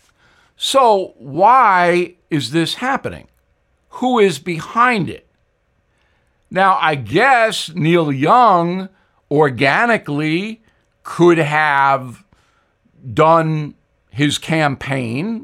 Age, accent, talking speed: 60-79, American, 80 wpm